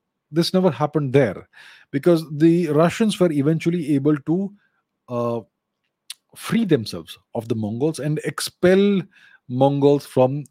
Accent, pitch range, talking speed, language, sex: Indian, 120-160 Hz, 120 wpm, English, male